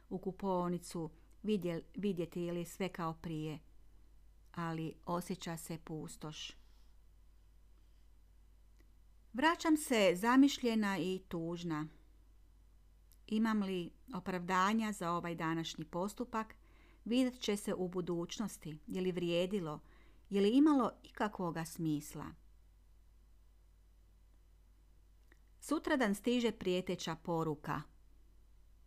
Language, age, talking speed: Croatian, 40-59, 85 wpm